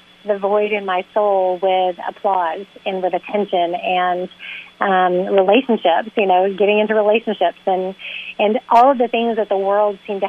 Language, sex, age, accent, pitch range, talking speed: English, female, 30-49, American, 195-230 Hz, 170 wpm